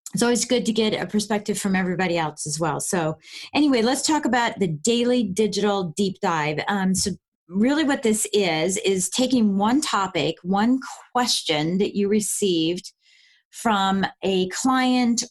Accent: American